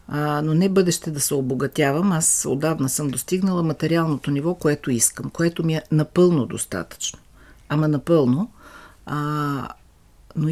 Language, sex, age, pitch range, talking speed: Bulgarian, female, 50-69, 140-180 Hz, 135 wpm